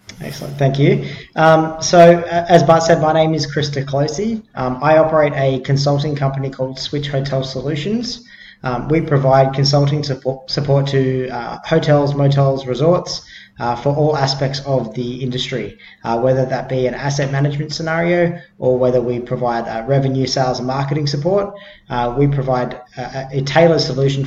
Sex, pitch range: male, 125-150 Hz